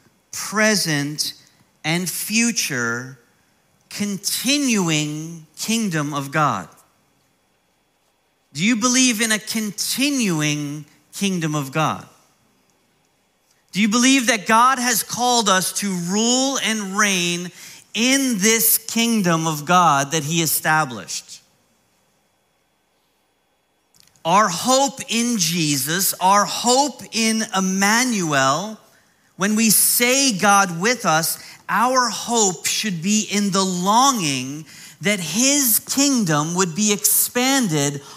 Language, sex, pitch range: English, male, 160-230 Hz